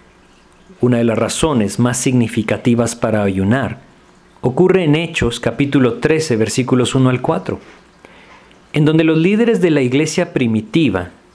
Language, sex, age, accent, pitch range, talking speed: Spanish, male, 50-69, Mexican, 105-135 Hz, 130 wpm